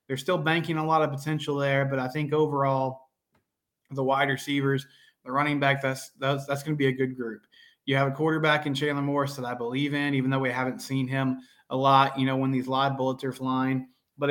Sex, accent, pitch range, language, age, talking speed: male, American, 130-150 Hz, English, 20-39, 230 wpm